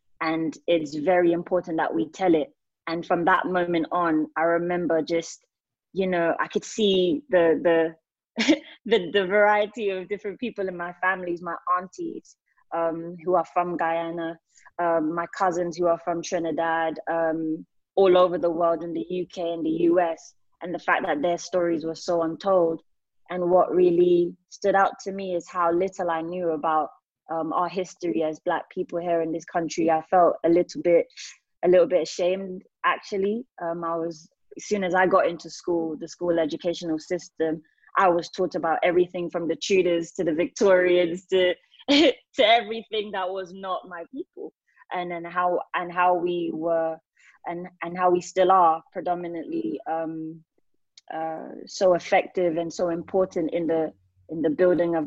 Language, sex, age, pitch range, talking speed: English, female, 20-39, 165-185 Hz, 175 wpm